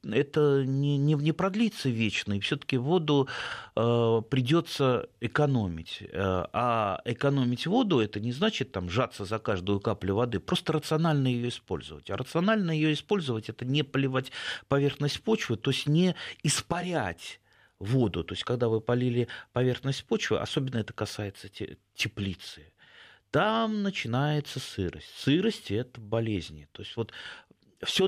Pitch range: 105-145 Hz